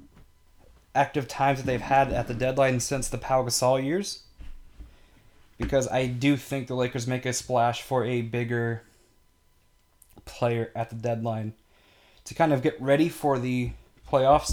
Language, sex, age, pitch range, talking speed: English, male, 20-39, 110-130 Hz, 155 wpm